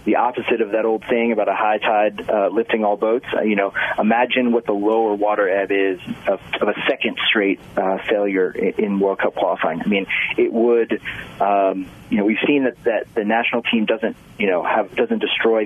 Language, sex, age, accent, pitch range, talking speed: English, male, 30-49, American, 100-110 Hz, 190 wpm